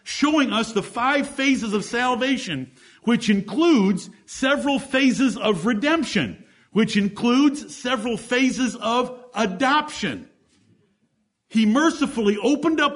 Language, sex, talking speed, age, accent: English, male, 105 wpm, 50-69, American